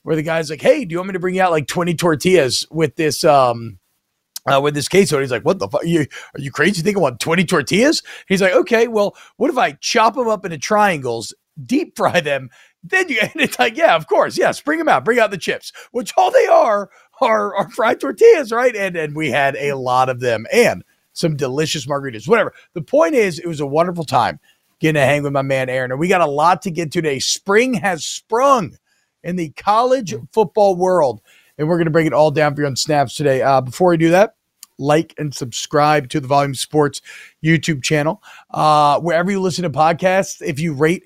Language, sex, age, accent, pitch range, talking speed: English, male, 40-59, American, 145-185 Hz, 235 wpm